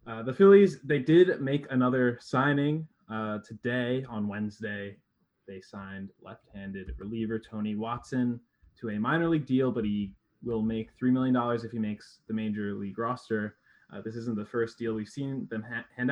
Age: 20-39